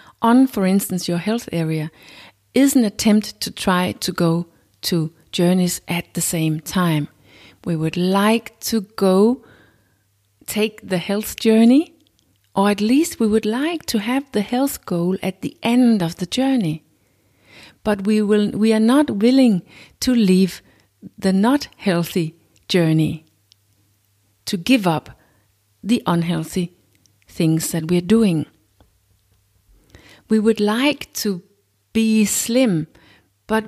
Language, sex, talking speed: English, female, 130 wpm